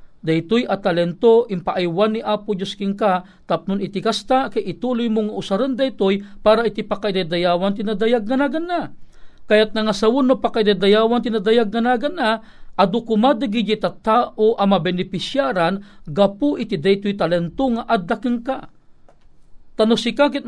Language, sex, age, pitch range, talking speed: Filipino, male, 50-69, 190-235 Hz, 140 wpm